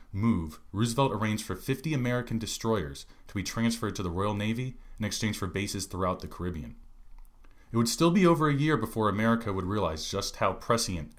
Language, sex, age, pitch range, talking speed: English, male, 30-49, 90-115 Hz, 190 wpm